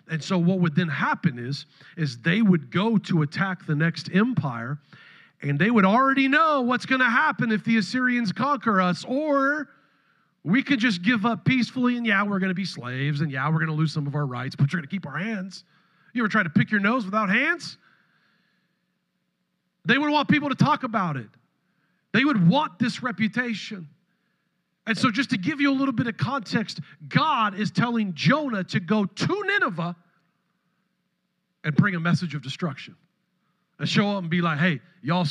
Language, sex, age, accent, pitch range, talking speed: English, male, 40-59, American, 160-215 Hz, 195 wpm